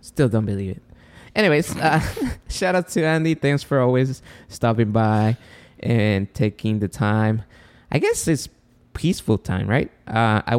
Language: English